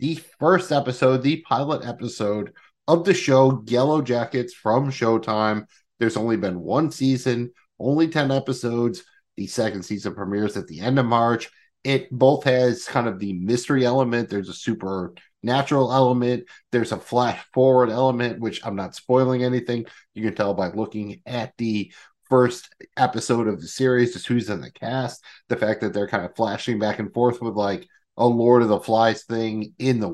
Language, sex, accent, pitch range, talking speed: English, male, American, 105-130 Hz, 175 wpm